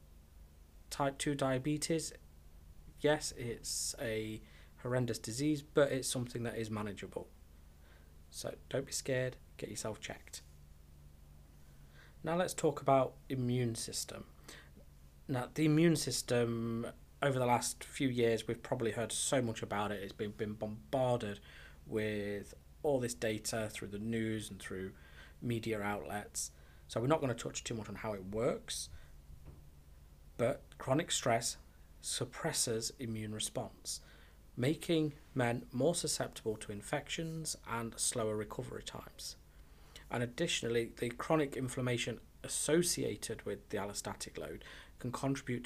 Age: 20-39